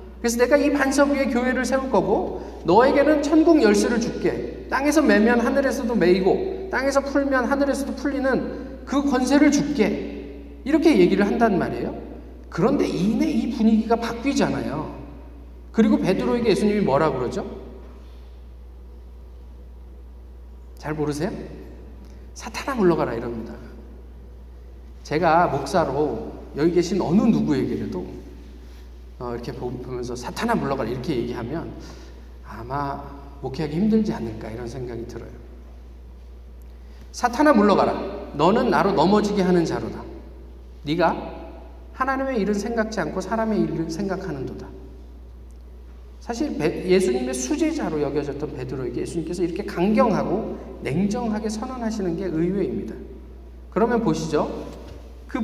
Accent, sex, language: native, male, Korean